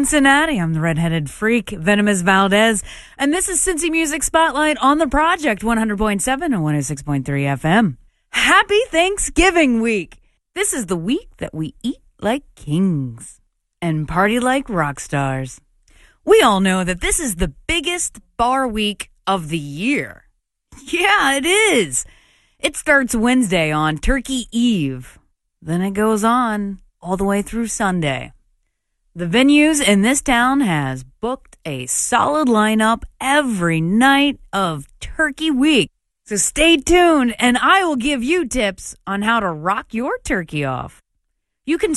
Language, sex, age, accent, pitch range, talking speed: English, female, 30-49, American, 185-295 Hz, 145 wpm